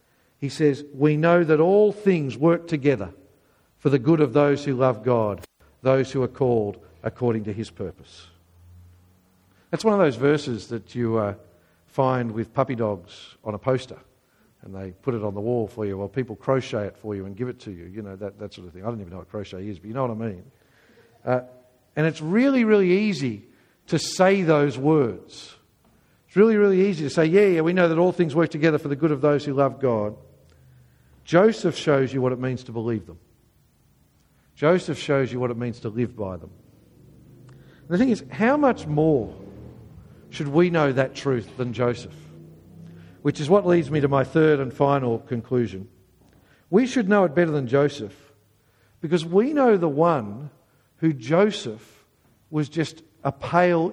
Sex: male